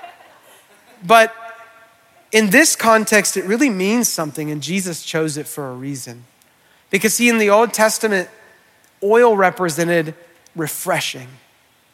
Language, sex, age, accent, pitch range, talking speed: English, male, 30-49, American, 160-220 Hz, 120 wpm